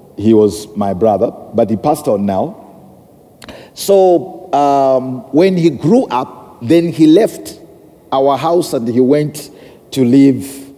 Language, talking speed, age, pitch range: English, 140 wpm, 50-69, 115-160 Hz